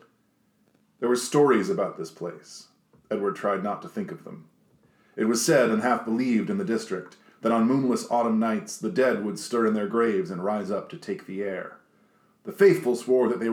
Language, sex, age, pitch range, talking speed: English, male, 40-59, 110-150 Hz, 205 wpm